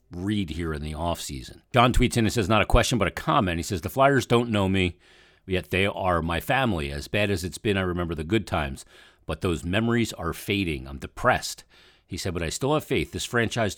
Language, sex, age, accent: English, male, 50-69, American